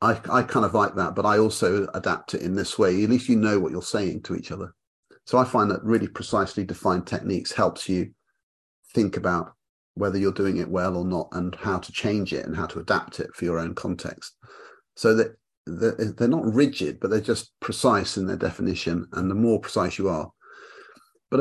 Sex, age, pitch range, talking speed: male, 40-59, 95-115 Hz, 215 wpm